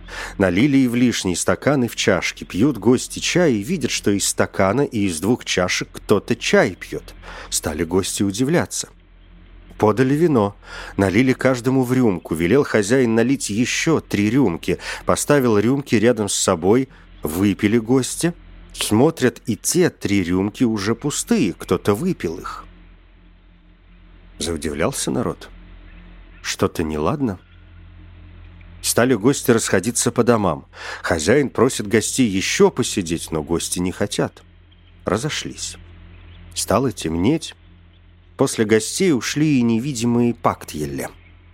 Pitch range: 85-120 Hz